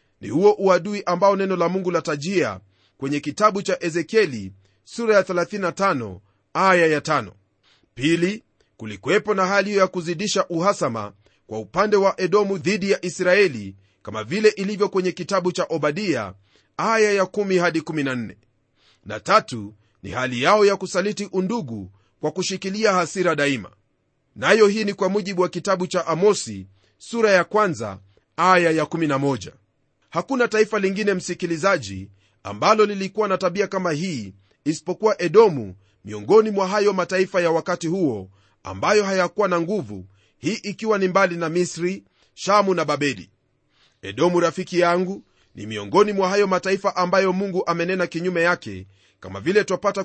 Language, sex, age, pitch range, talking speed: Swahili, male, 30-49, 130-195 Hz, 145 wpm